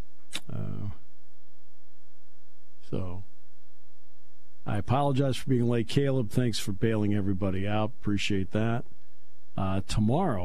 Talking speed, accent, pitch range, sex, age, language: 100 wpm, American, 100-140 Hz, male, 50-69, English